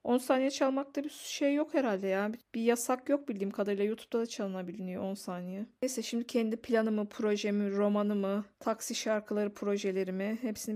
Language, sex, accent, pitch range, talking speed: Turkish, female, native, 205-245 Hz, 155 wpm